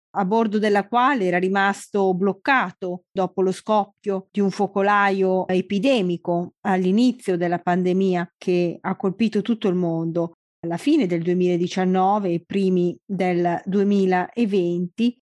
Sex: female